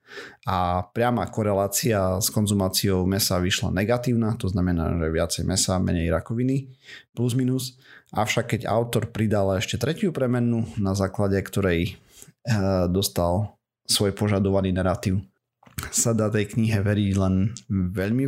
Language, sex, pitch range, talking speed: Slovak, male, 95-120 Hz, 130 wpm